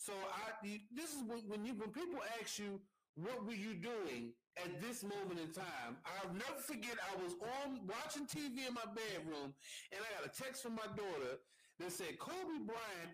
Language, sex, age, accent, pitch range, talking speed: English, male, 40-59, American, 195-290 Hz, 190 wpm